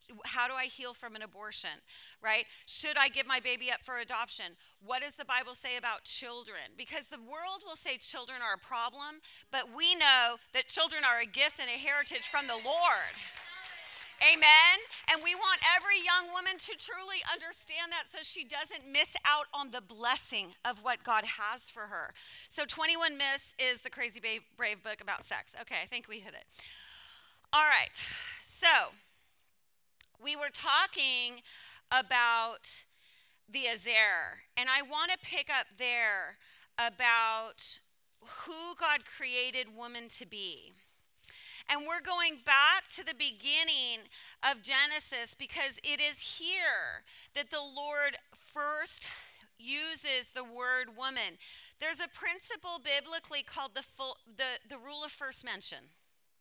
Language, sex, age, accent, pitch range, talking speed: English, female, 30-49, American, 245-315 Hz, 150 wpm